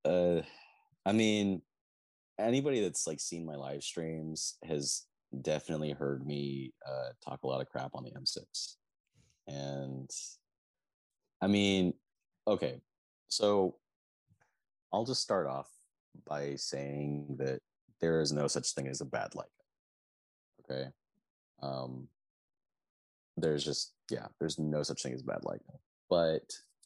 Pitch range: 65-80 Hz